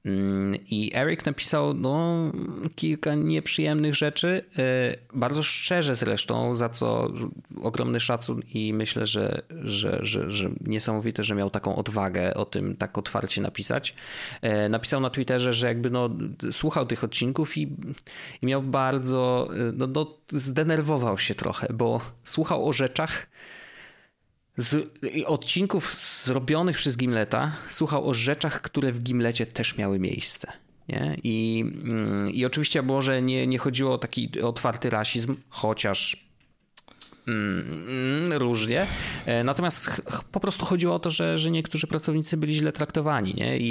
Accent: native